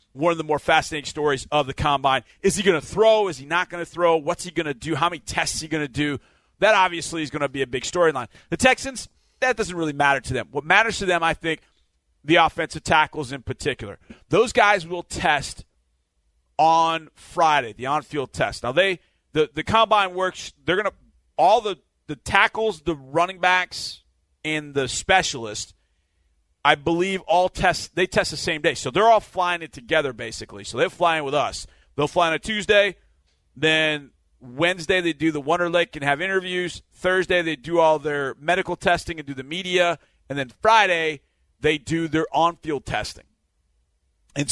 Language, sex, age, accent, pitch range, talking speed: English, male, 30-49, American, 125-175 Hz, 195 wpm